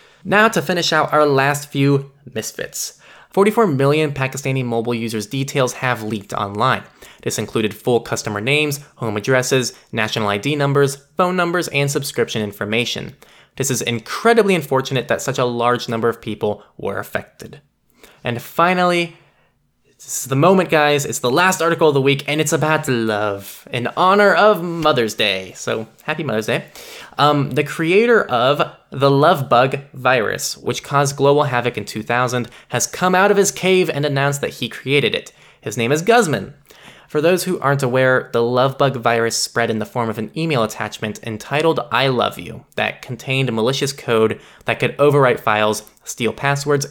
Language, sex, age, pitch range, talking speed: English, male, 10-29, 115-155 Hz, 170 wpm